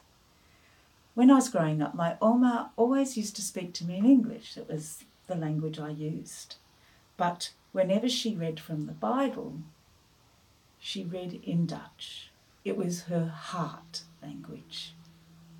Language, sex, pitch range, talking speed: English, female, 155-210 Hz, 140 wpm